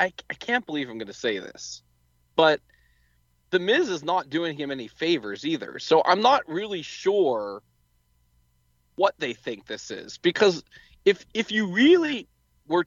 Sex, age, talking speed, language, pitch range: male, 30-49, 165 wpm, English, 140-200 Hz